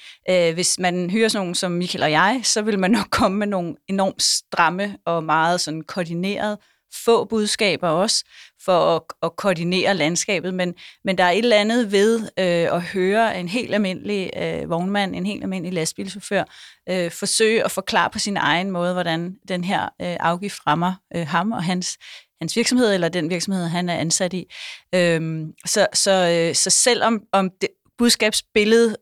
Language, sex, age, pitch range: Danish, female, 30-49, 175-210 Hz